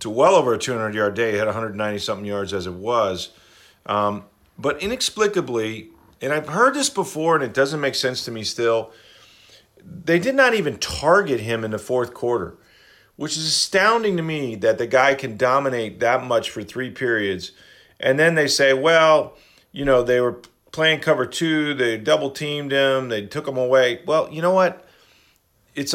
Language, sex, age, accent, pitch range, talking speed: English, male, 40-59, American, 110-150 Hz, 185 wpm